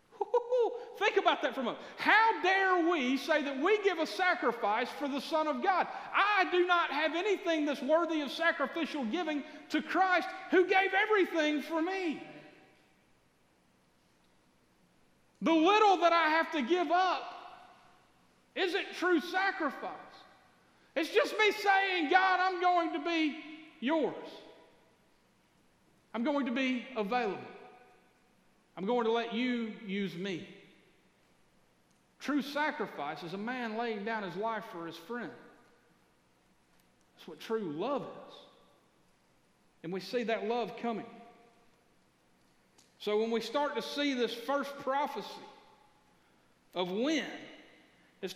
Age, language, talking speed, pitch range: 40-59, English, 130 wpm, 230-355 Hz